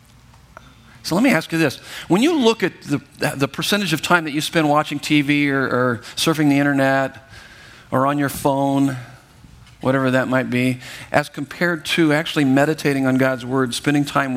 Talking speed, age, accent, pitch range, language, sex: 180 wpm, 50-69, American, 135-170 Hz, English, male